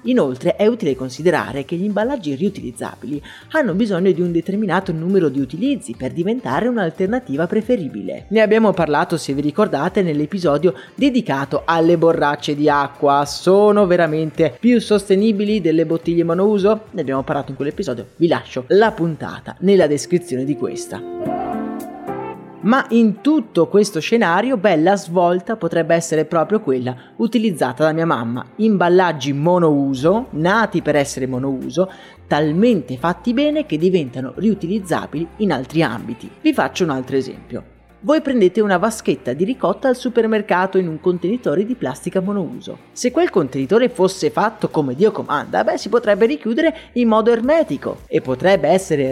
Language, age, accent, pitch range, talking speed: Italian, 30-49, native, 155-220 Hz, 145 wpm